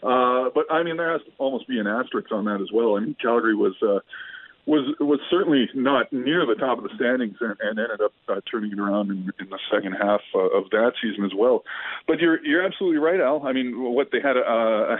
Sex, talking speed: male, 250 wpm